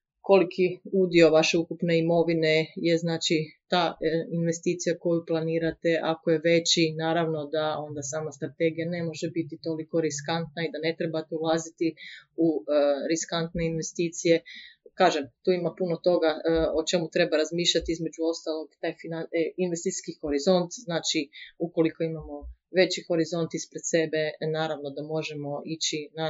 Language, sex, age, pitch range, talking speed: Croatian, female, 30-49, 160-175 Hz, 130 wpm